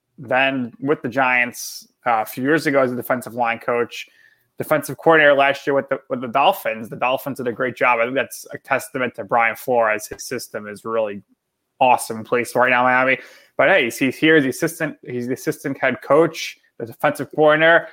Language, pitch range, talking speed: English, 125-155 Hz, 200 wpm